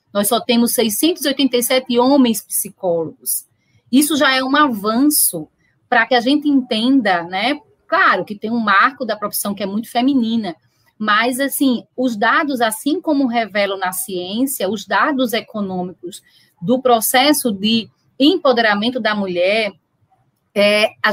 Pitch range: 210-280 Hz